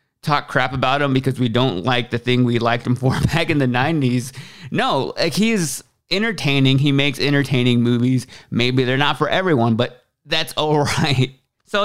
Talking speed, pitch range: 180 wpm, 120-140 Hz